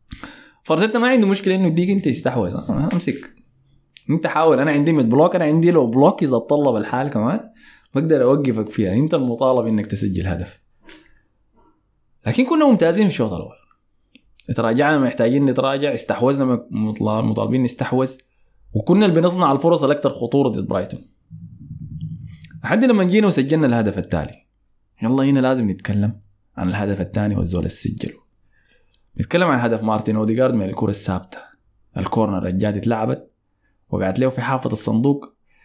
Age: 20-39